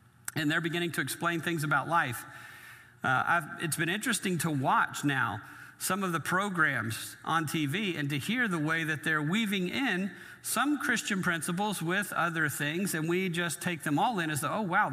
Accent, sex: American, male